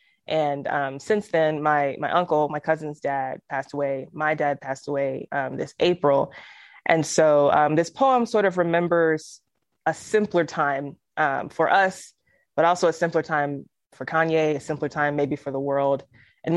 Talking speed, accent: 175 wpm, American